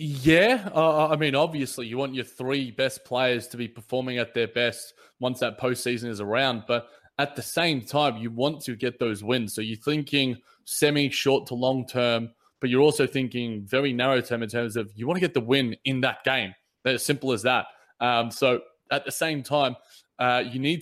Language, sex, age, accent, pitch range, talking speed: English, male, 20-39, Australian, 120-140 Hz, 210 wpm